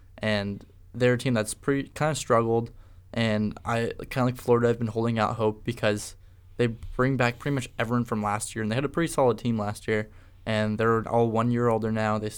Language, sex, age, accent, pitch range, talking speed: English, male, 20-39, American, 105-120 Hz, 235 wpm